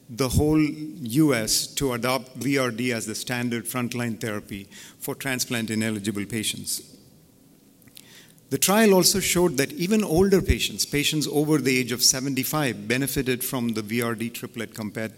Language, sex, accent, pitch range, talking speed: English, male, Indian, 115-145 Hz, 135 wpm